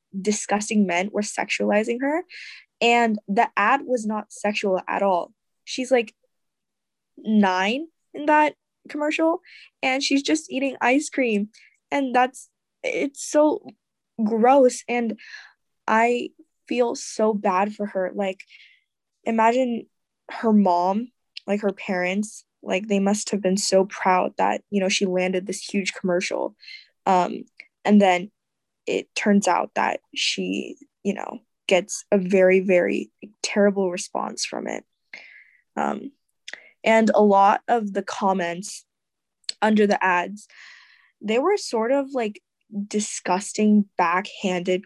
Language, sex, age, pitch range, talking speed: English, female, 10-29, 195-255 Hz, 125 wpm